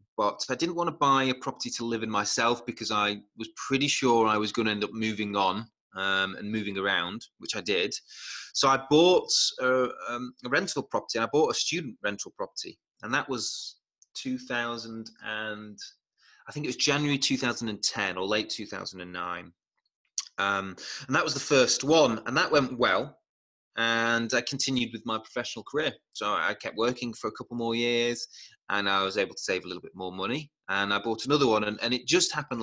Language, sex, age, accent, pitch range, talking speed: English, male, 20-39, British, 100-125 Hz, 200 wpm